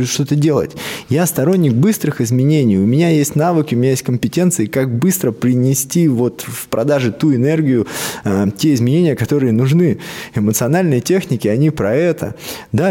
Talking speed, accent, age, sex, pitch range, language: 150 wpm, native, 20-39, male, 105-145 Hz, Russian